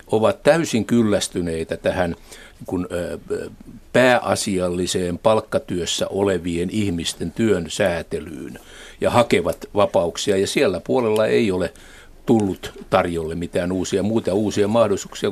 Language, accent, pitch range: Finnish, native, 90-125 Hz